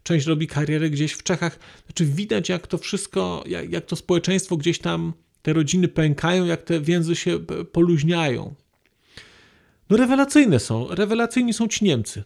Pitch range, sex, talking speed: 170-210 Hz, male, 155 wpm